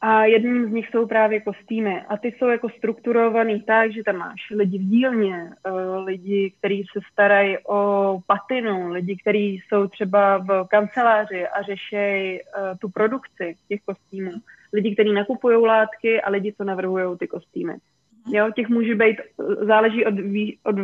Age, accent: 20-39, native